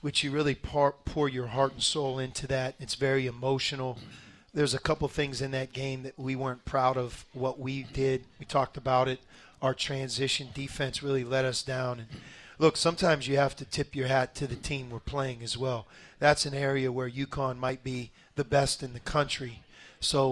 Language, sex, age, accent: English, male, 40-59, American